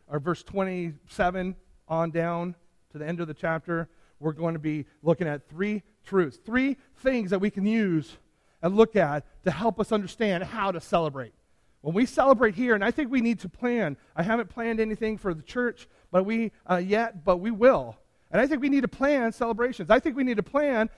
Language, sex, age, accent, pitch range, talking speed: English, male, 40-59, American, 170-235 Hz, 210 wpm